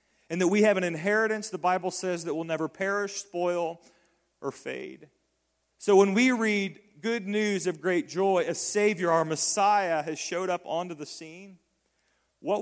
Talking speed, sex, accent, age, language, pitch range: 170 wpm, male, American, 40-59, English, 170-225 Hz